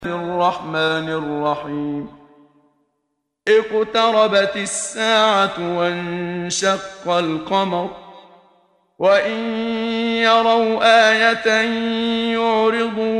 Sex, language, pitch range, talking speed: male, Arabic, 190-220 Hz, 55 wpm